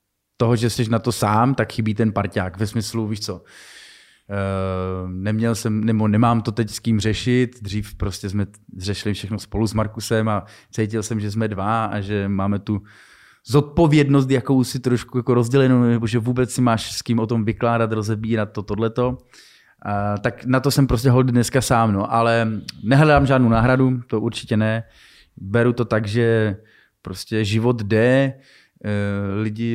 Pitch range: 100-115 Hz